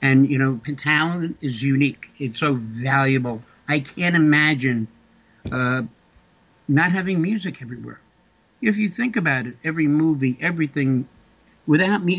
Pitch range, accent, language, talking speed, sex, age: 125-150 Hz, American, English, 130 wpm, male, 60-79